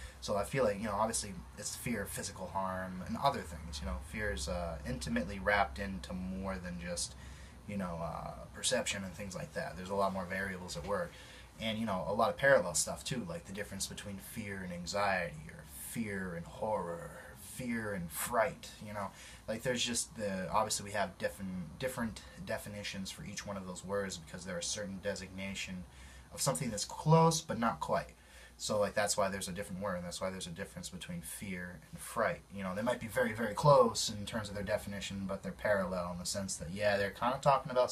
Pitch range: 90-105 Hz